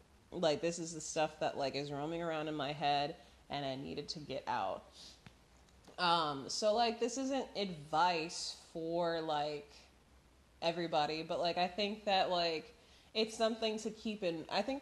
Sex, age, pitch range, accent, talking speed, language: female, 20-39, 140-185 Hz, American, 165 wpm, English